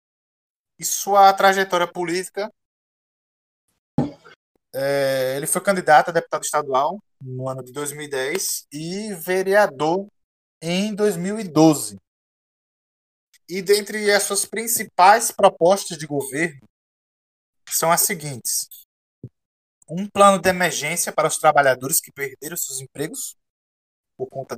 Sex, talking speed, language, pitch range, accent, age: male, 105 wpm, Portuguese, 145-195 Hz, Brazilian, 20-39